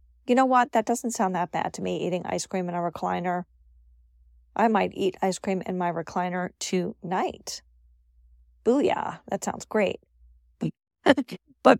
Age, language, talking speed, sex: 40-59, English, 155 wpm, female